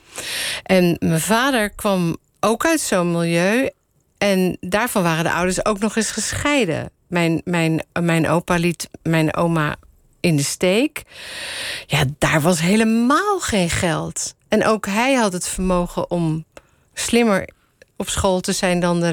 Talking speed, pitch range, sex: 145 wpm, 160-220 Hz, female